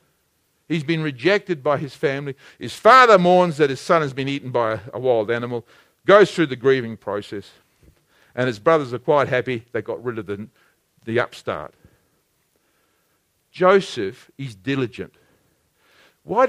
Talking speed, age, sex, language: 150 wpm, 50-69, male, English